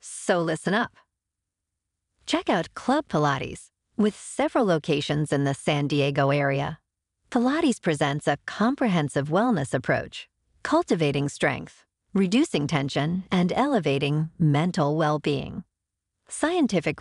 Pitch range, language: 145-225 Hz, English